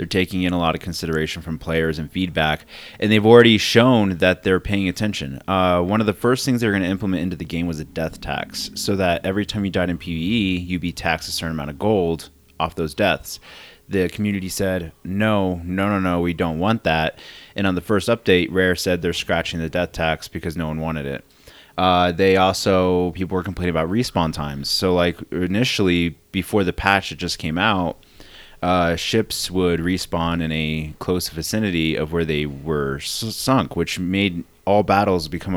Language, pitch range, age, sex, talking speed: English, 80-95 Hz, 30-49, male, 200 wpm